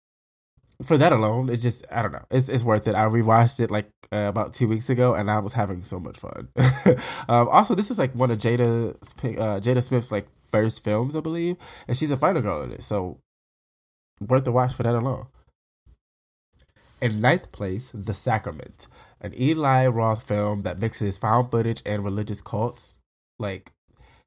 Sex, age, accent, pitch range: male, 20-39, American, 105-125 Hz